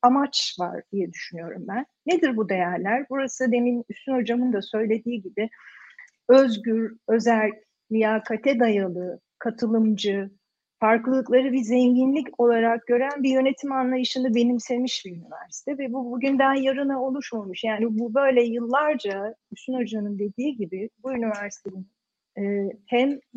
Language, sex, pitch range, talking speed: Turkish, female, 210-260 Hz, 120 wpm